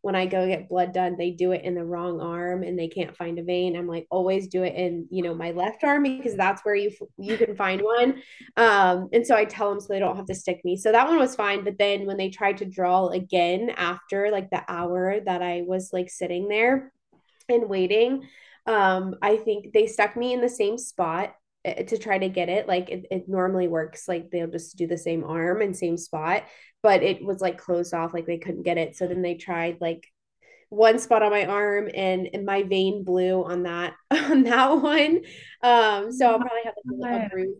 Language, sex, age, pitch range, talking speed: English, female, 20-39, 180-210 Hz, 230 wpm